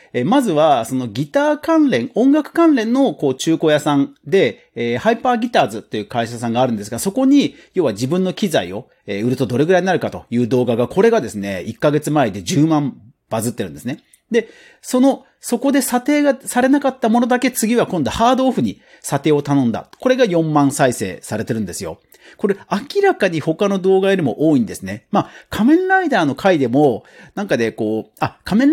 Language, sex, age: Japanese, male, 40-59